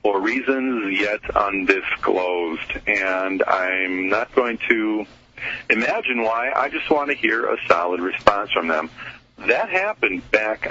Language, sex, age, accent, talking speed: English, male, 40-59, American, 135 wpm